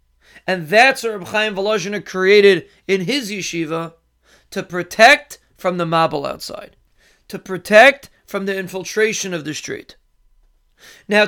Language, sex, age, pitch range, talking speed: English, male, 30-49, 180-225 Hz, 135 wpm